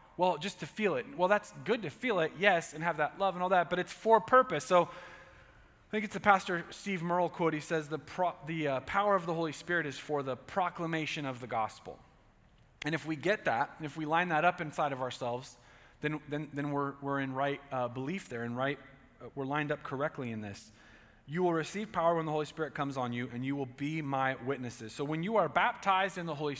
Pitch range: 135-175 Hz